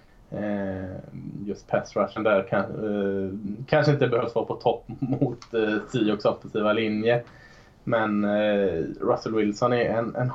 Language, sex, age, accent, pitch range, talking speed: Swedish, male, 20-39, Norwegian, 105-125 Hz, 140 wpm